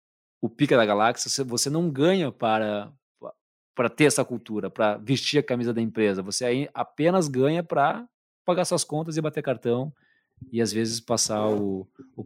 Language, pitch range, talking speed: Portuguese, 110-145 Hz, 165 wpm